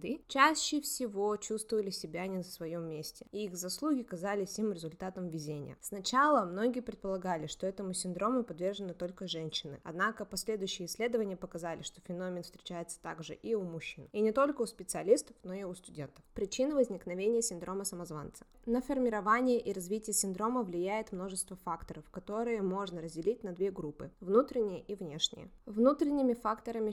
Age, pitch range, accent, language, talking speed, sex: 20-39, 180-230 Hz, native, Russian, 150 wpm, female